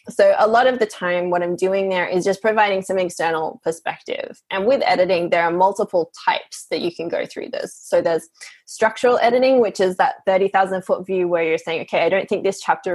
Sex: female